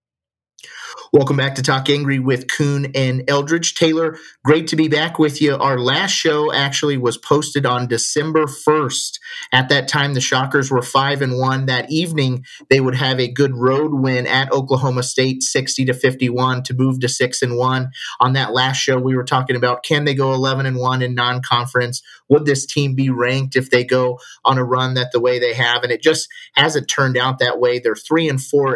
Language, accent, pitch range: English, American, 125-140 Hz